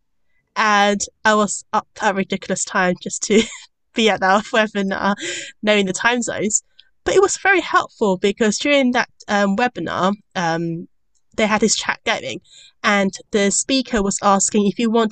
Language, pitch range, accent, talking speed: English, 185-230 Hz, British, 165 wpm